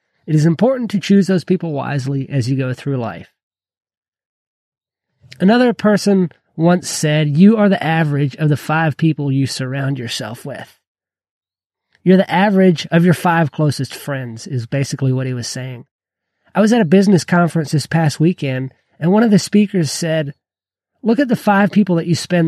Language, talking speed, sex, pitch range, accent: English, 175 wpm, male, 140-185 Hz, American